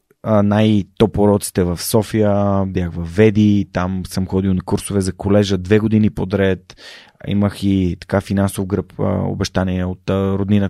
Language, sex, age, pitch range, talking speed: Bulgarian, male, 30-49, 95-110 Hz, 135 wpm